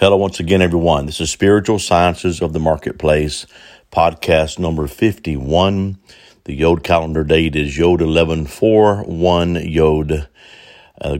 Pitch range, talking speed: 75-95 Hz, 125 wpm